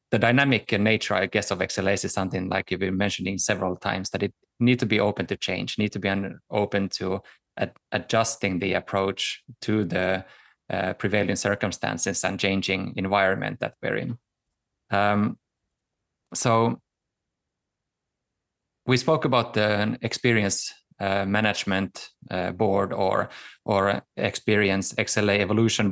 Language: English